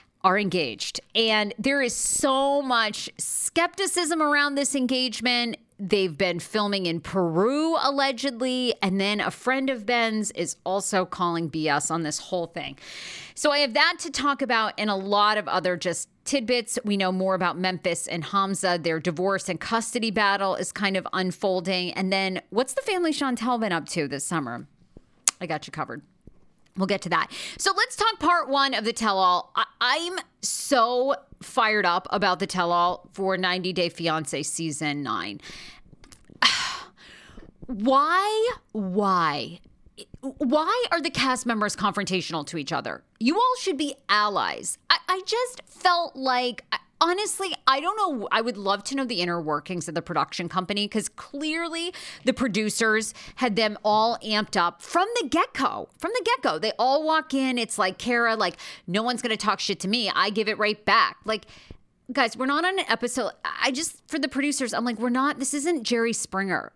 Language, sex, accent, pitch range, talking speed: English, female, American, 185-275 Hz, 175 wpm